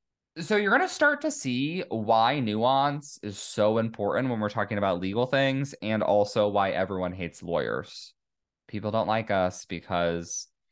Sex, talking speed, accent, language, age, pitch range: male, 160 wpm, American, English, 20-39, 100-135 Hz